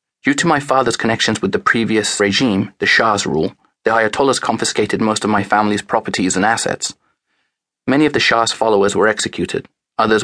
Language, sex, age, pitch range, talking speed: English, male, 30-49, 100-115 Hz, 175 wpm